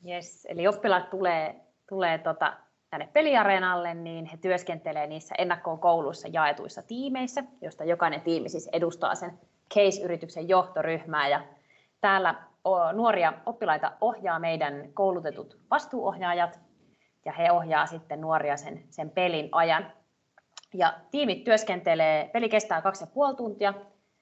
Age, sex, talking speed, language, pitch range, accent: 30-49, female, 115 wpm, Finnish, 155-195 Hz, native